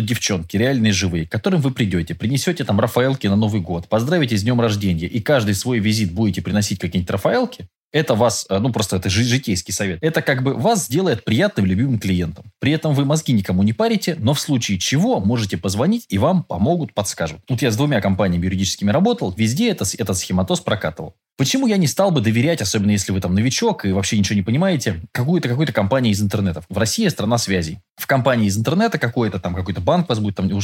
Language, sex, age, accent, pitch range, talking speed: Russian, male, 20-39, native, 100-145 Hz, 200 wpm